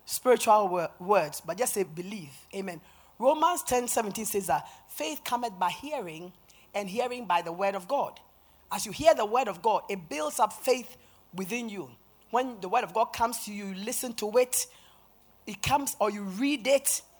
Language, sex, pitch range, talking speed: English, female, 195-265 Hz, 185 wpm